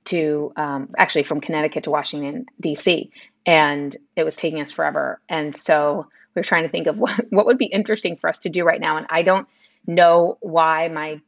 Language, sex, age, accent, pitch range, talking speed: English, female, 30-49, American, 155-210 Hz, 210 wpm